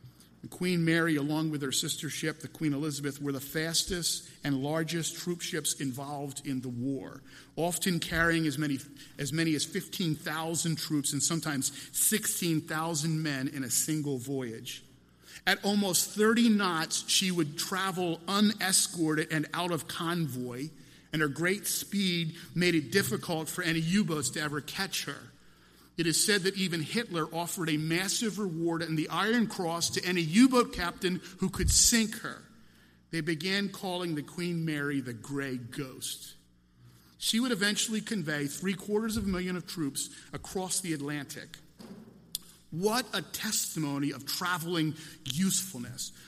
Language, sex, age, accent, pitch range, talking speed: English, male, 50-69, American, 145-185 Hz, 145 wpm